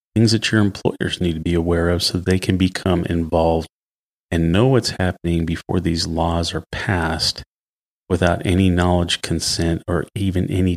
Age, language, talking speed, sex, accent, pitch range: 30-49, English, 165 wpm, male, American, 85-95 Hz